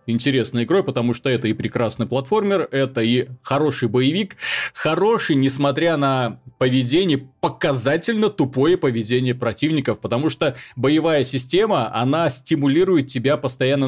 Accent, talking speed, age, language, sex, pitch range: native, 120 wpm, 30-49, Russian, male, 120-145 Hz